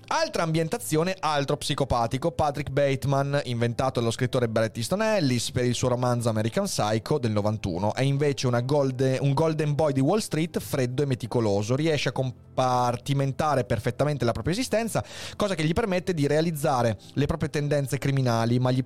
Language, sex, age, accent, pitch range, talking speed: Italian, male, 30-49, native, 115-150 Hz, 165 wpm